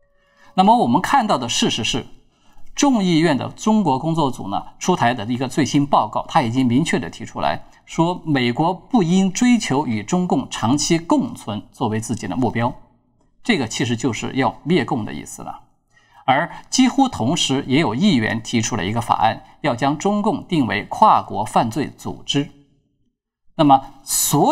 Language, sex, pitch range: Chinese, male, 120-165 Hz